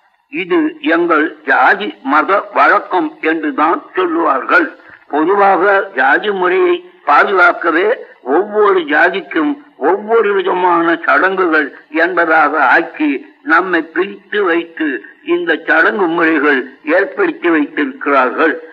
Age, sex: 60-79, male